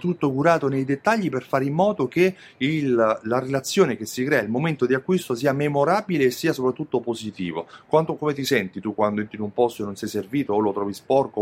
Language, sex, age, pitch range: Italian, male, 30-49, 105-135 Hz